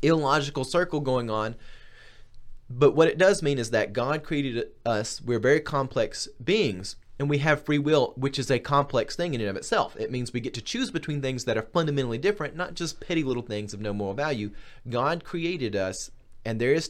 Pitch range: 115-155 Hz